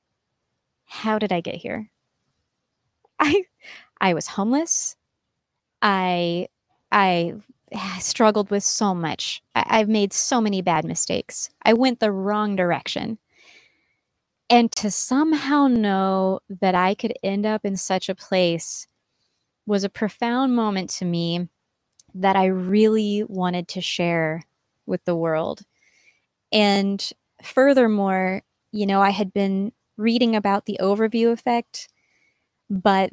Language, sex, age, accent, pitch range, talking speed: English, female, 20-39, American, 190-230 Hz, 120 wpm